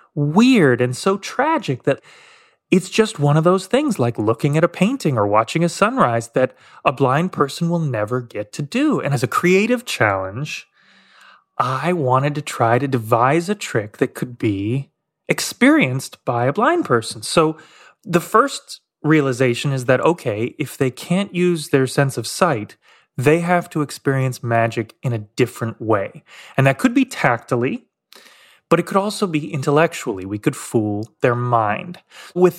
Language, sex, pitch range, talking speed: English, male, 125-170 Hz, 170 wpm